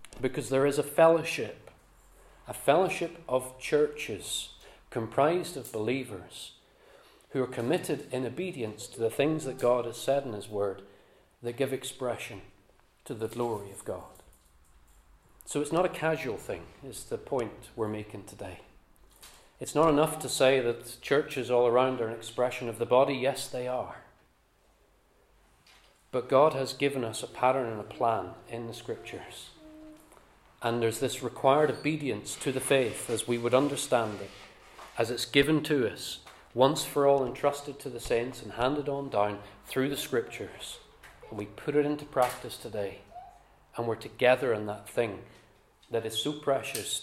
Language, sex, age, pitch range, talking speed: English, male, 40-59, 115-145 Hz, 160 wpm